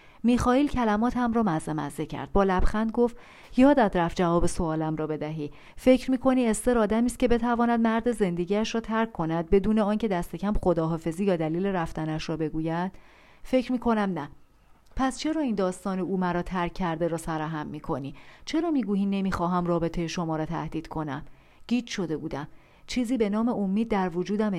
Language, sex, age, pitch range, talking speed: Persian, female, 40-59, 170-240 Hz, 165 wpm